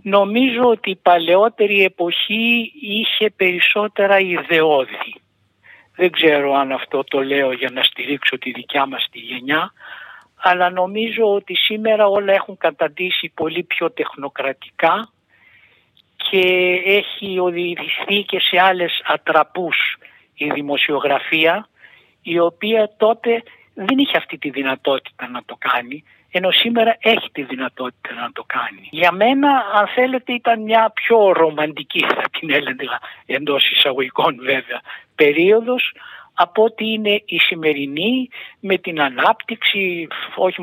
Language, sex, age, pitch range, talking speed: Greek, male, 60-79, 150-220 Hz, 125 wpm